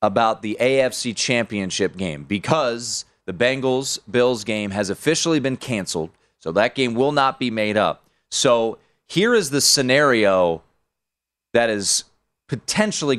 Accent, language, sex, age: American, English, male, 30-49